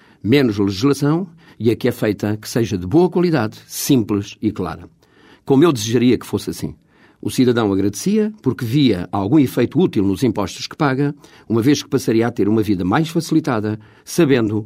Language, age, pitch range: Portuguese, 50-69, 110-145 Hz